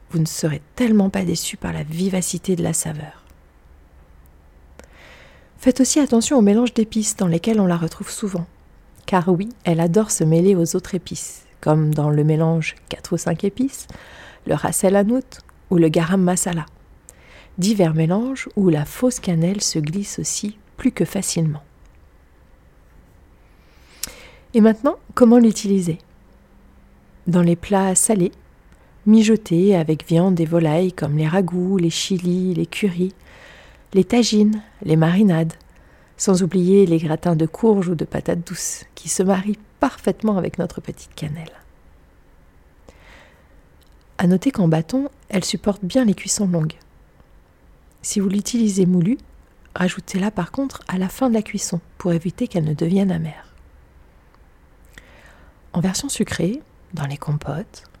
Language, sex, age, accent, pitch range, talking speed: French, female, 40-59, French, 150-200 Hz, 140 wpm